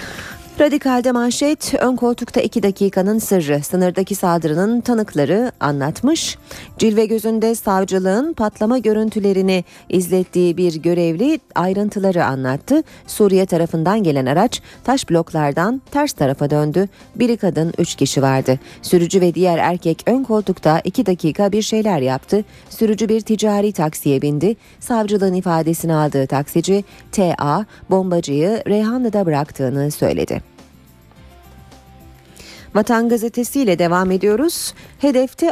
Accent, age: native, 40-59